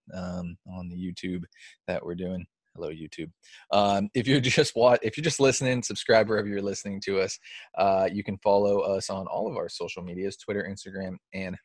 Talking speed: 195 wpm